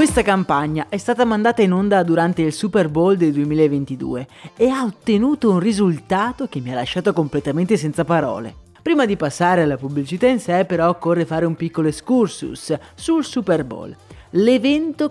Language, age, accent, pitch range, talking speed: Italian, 30-49, native, 155-225 Hz, 165 wpm